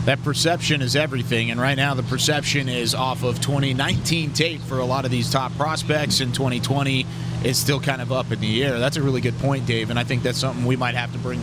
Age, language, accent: 30-49, English, American